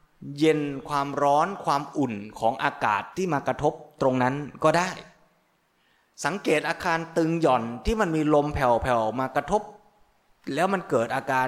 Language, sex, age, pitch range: Thai, male, 20-39, 130-165 Hz